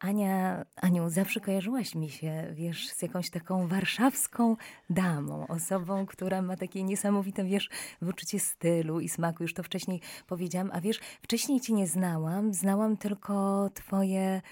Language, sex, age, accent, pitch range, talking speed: Polish, female, 20-39, native, 165-200 Hz, 145 wpm